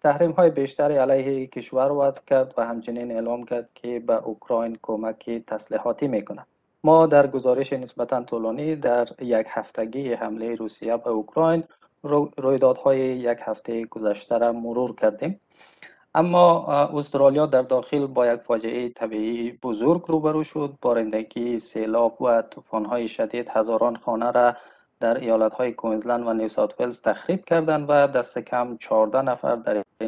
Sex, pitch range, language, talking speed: male, 115-140 Hz, Persian, 140 wpm